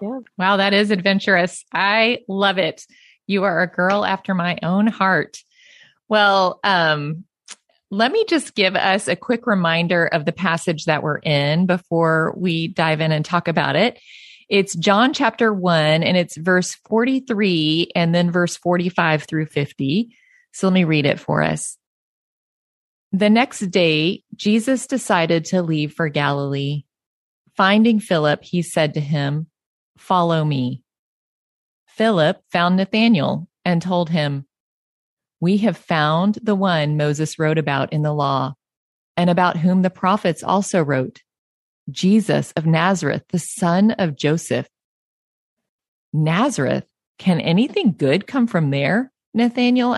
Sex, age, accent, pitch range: female, 30-49, American, 155-205 Hz